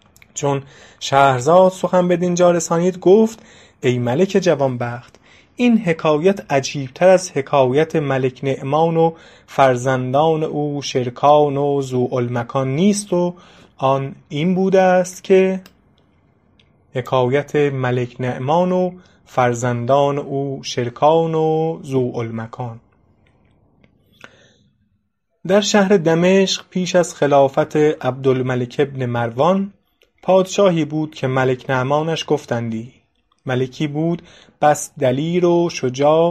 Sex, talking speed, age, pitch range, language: male, 100 wpm, 30-49, 130-175 Hz, English